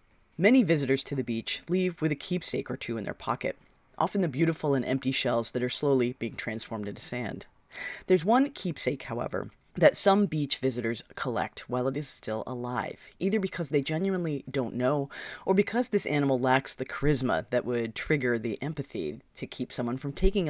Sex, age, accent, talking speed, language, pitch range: female, 30-49, American, 185 wpm, English, 125-170 Hz